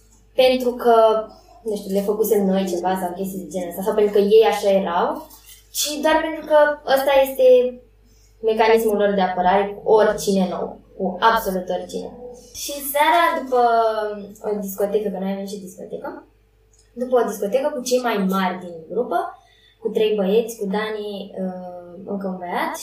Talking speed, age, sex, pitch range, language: 165 wpm, 20-39, female, 195-245 Hz, Romanian